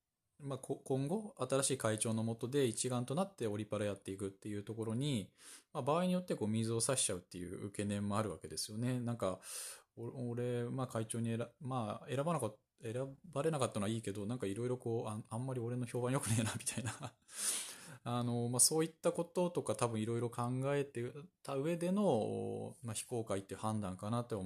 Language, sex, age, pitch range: Japanese, male, 20-39, 105-140 Hz